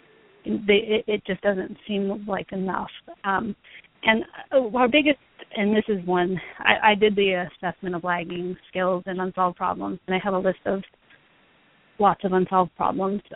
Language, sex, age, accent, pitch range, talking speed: English, female, 30-49, American, 185-210 Hz, 155 wpm